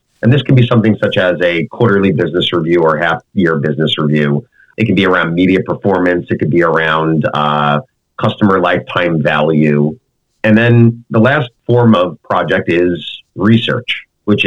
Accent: American